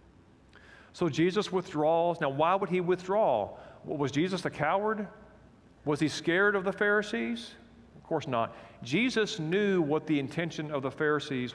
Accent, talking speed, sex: American, 150 wpm, male